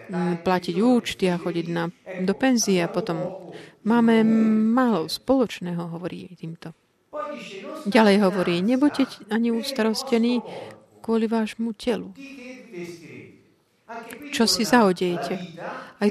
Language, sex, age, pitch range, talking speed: Slovak, female, 40-59, 180-230 Hz, 95 wpm